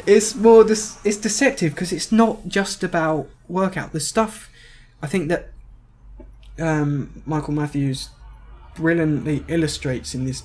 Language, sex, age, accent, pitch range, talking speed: English, male, 20-39, British, 130-155 Hz, 140 wpm